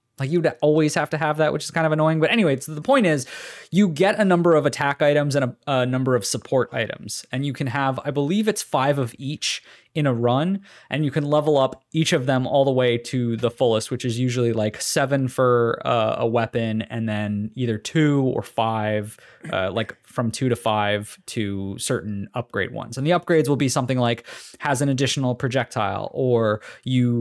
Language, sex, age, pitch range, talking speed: English, male, 20-39, 120-145 Hz, 215 wpm